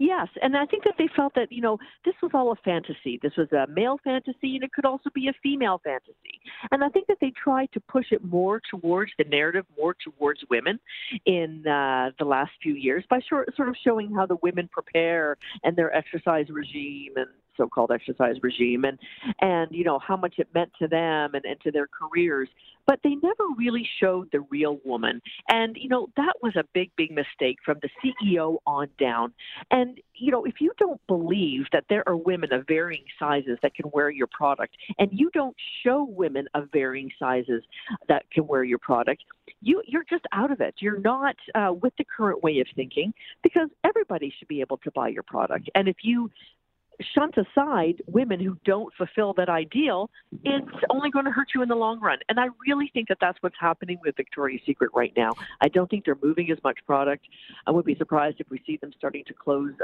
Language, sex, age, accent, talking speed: English, female, 50-69, American, 215 wpm